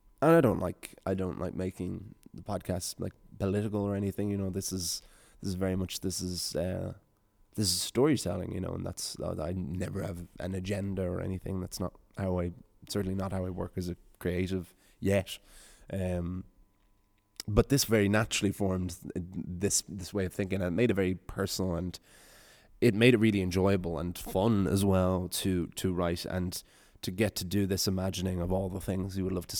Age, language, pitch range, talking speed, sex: 20-39, English, 90-105 Hz, 195 wpm, male